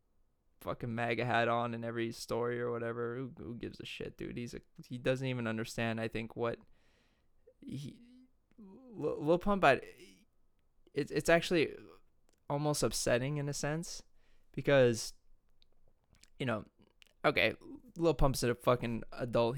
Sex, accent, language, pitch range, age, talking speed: male, American, English, 120-145 Hz, 20-39, 140 wpm